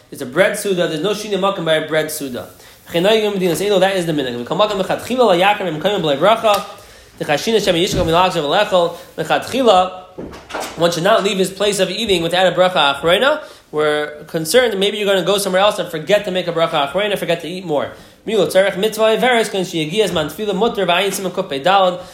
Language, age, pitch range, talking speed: English, 20-39, 165-210 Hz, 150 wpm